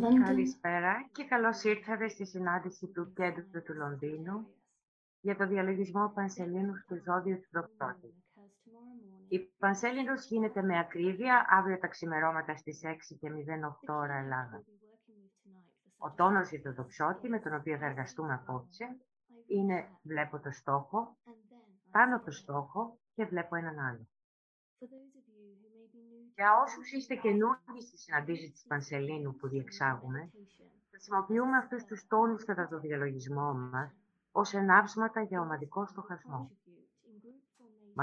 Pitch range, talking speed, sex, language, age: 150-210 Hz, 120 wpm, female, Greek, 30-49